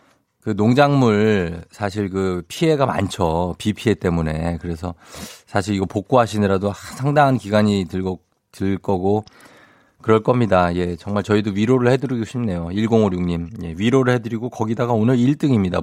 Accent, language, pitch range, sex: native, Korean, 95-115 Hz, male